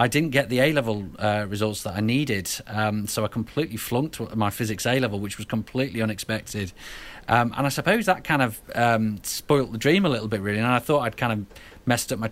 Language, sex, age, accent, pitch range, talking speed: English, male, 30-49, British, 105-120 Hz, 220 wpm